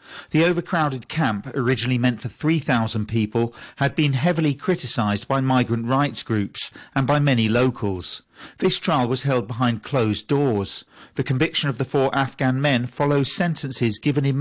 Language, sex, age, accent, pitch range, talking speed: English, male, 40-59, British, 90-130 Hz, 160 wpm